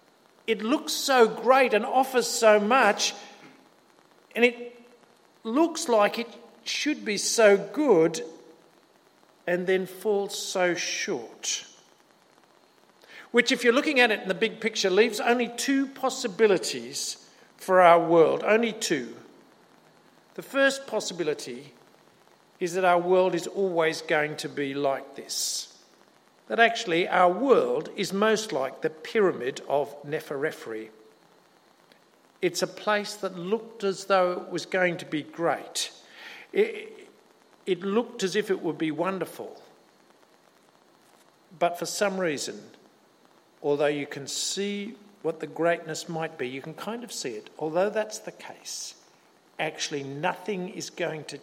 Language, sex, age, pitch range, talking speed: English, male, 50-69, 170-230 Hz, 135 wpm